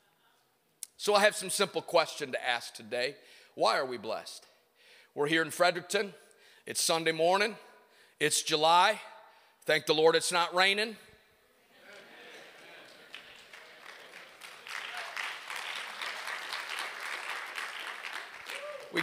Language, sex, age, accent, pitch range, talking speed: English, male, 40-59, American, 185-245 Hz, 90 wpm